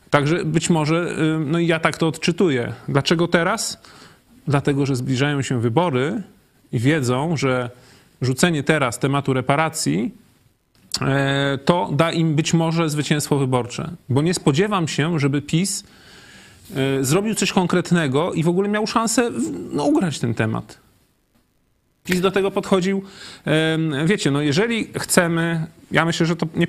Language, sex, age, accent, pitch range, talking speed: Polish, male, 30-49, native, 140-175 Hz, 135 wpm